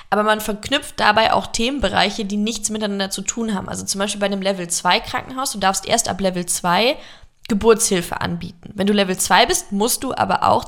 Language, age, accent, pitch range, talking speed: German, 20-39, German, 195-230 Hz, 210 wpm